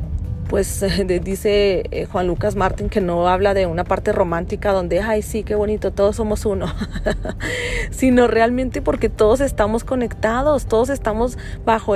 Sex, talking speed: female, 145 wpm